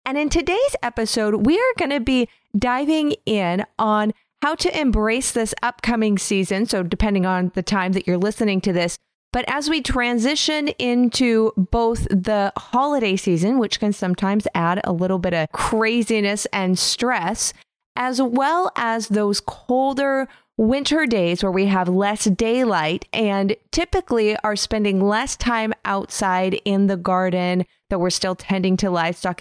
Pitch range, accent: 190-245 Hz, American